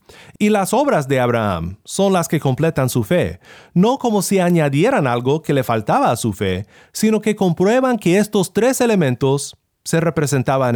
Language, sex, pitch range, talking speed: Spanish, male, 130-190 Hz, 175 wpm